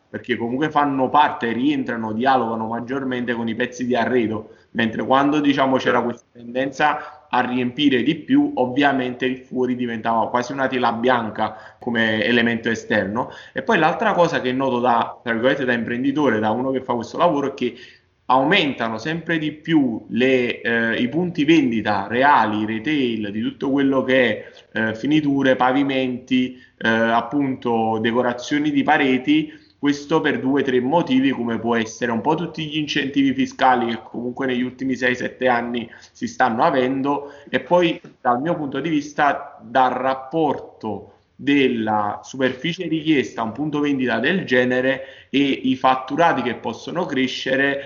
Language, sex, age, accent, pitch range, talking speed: Italian, male, 20-39, native, 120-145 Hz, 155 wpm